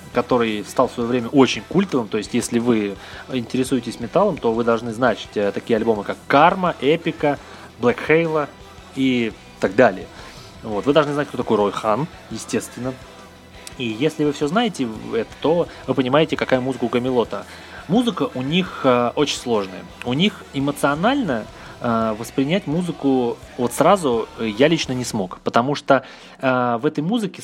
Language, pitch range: Russian, 115-150 Hz